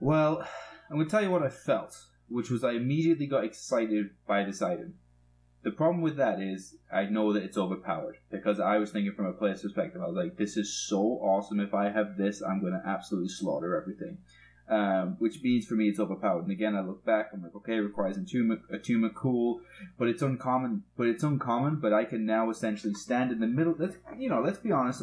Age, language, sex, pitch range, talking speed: 20-39, English, male, 105-140 Hz, 225 wpm